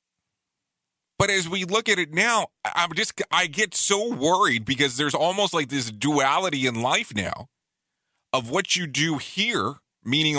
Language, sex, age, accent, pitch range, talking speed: English, male, 30-49, American, 125-165 Hz, 160 wpm